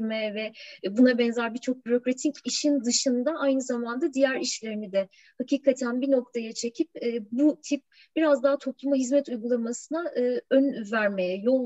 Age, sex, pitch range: 30-49, female, 230-280 Hz